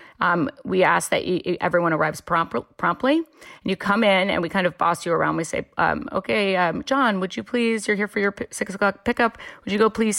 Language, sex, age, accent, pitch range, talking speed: English, female, 30-49, American, 165-210 Hz, 225 wpm